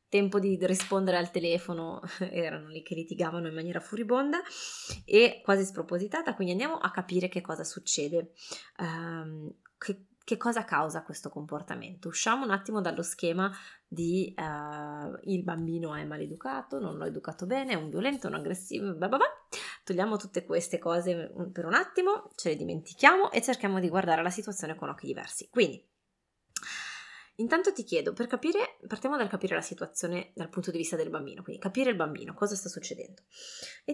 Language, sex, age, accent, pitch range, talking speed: Italian, female, 20-39, native, 170-225 Hz, 170 wpm